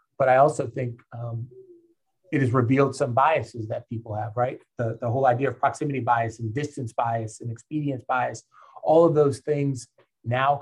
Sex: male